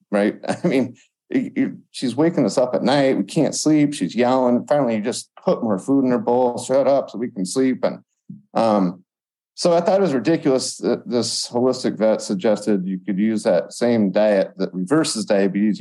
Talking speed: 195 wpm